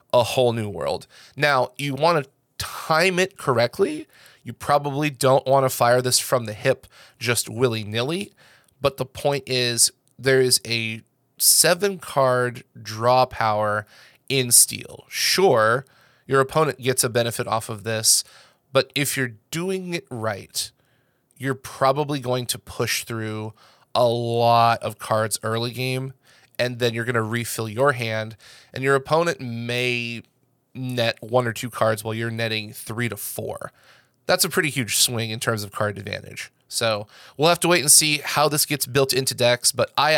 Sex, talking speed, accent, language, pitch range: male, 165 wpm, American, English, 115-140 Hz